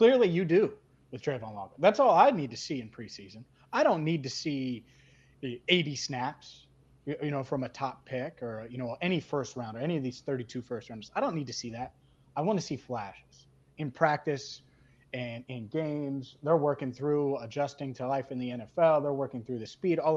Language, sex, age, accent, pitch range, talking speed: English, male, 30-49, American, 125-155 Hz, 210 wpm